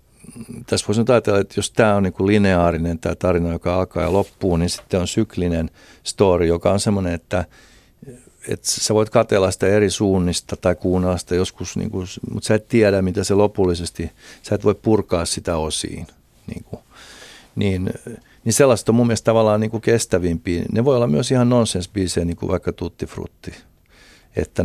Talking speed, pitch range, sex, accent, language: 175 wpm, 90-110 Hz, male, native, Finnish